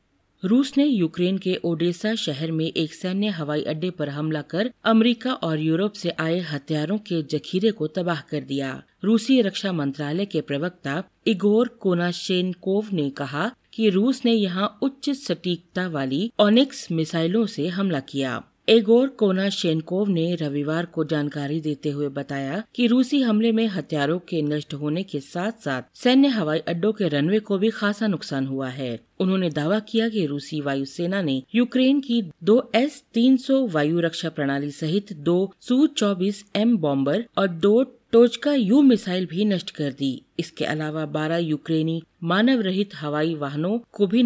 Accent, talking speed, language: native, 160 wpm, Hindi